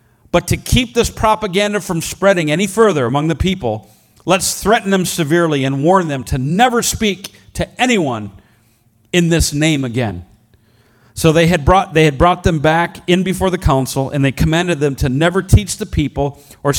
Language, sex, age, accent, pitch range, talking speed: English, male, 40-59, American, 130-190 Hz, 180 wpm